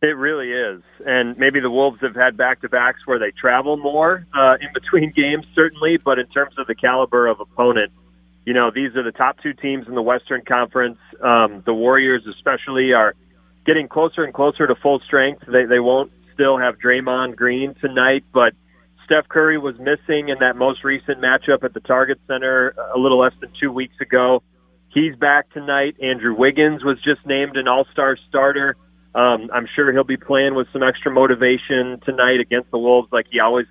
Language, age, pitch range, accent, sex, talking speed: English, 30-49, 120-140 Hz, American, male, 190 wpm